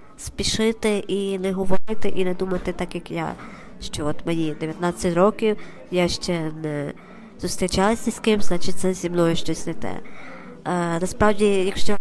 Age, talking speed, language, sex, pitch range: 20-39, 160 wpm, Ukrainian, male, 175-210 Hz